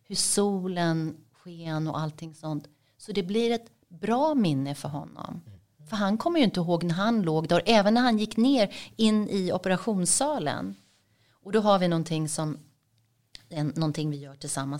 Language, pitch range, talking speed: English, 145-195 Hz, 170 wpm